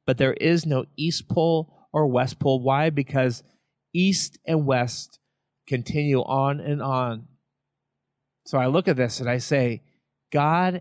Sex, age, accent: male, 40-59, American